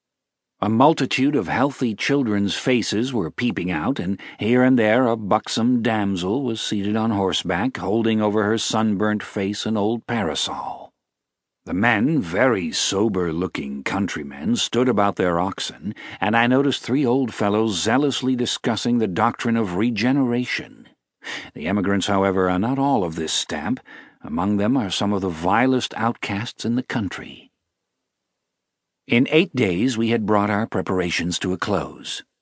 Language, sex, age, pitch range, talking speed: English, male, 50-69, 100-125 Hz, 150 wpm